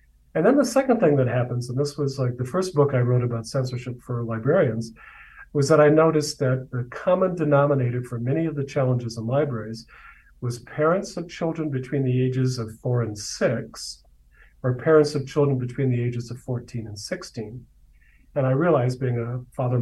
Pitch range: 120-145 Hz